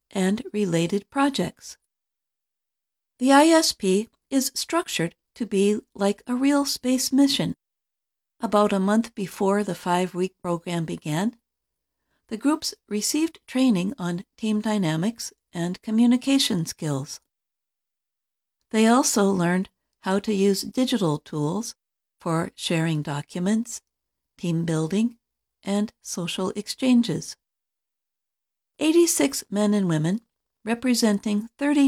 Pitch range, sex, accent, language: 175-240 Hz, female, American, Chinese